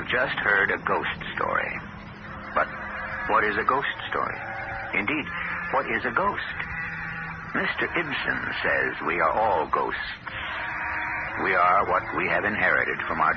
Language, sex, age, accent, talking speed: English, male, 60-79, American, 140 wpm